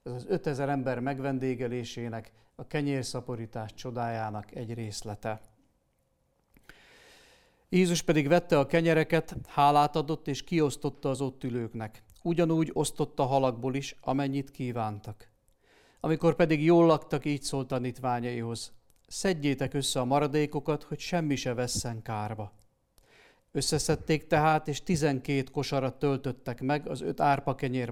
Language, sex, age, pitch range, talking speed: Hungarian, male, 40-59, 120-150 Hz, 115 wpm